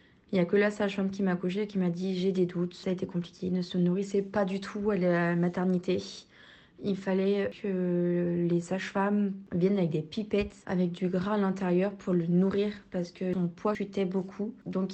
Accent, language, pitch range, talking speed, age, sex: French, French, 180-200 Hz, 230 wpm, 20-39, female